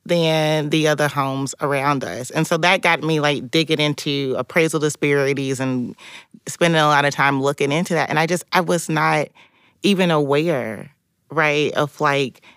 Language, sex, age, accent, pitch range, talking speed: English, female, 30-49, American, 140-165 Hz, 170 wpm